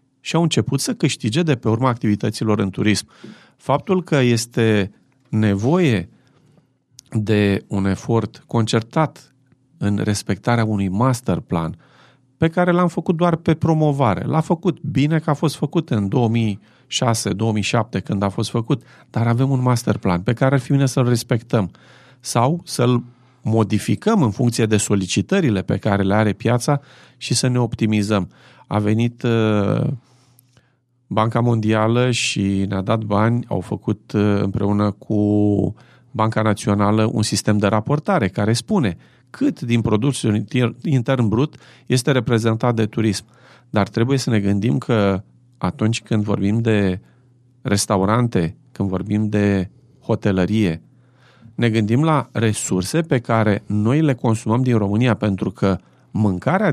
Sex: male